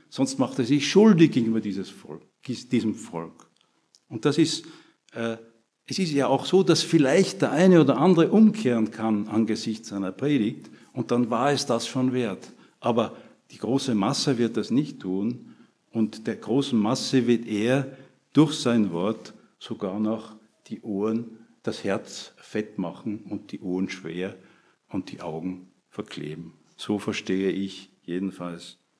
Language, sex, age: German, male, 50-69